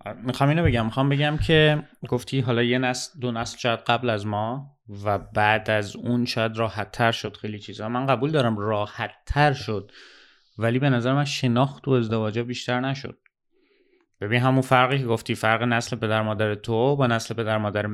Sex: male